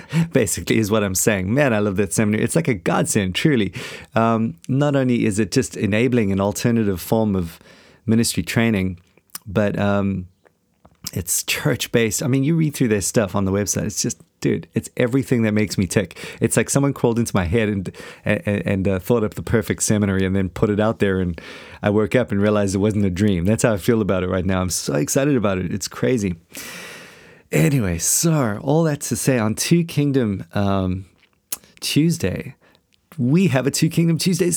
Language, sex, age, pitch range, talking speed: English, male, 30-49, 100-125 Hz, 200 wpm